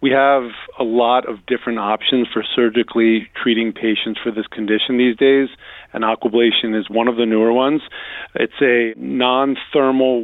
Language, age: English, 40-59